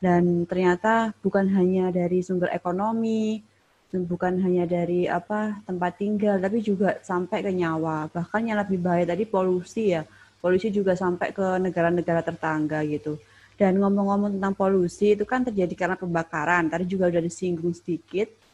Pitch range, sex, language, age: 175-210 Hz, female, Indonesian, 20-39